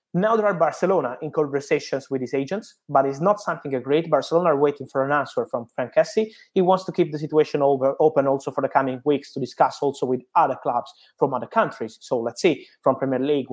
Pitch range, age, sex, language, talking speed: 135-165 Hz, 20-39, male, English, 225 wpm